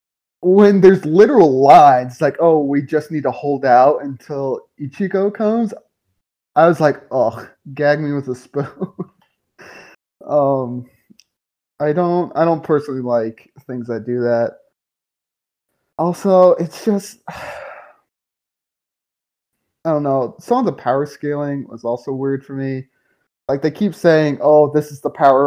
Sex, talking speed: male, 145 wpm